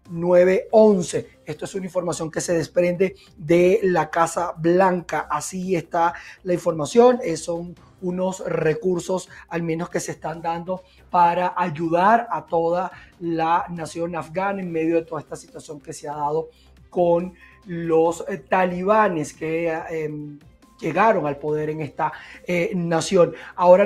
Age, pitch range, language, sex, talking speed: 30-49, 160-185 Hz, Spanish, male, 140 wpm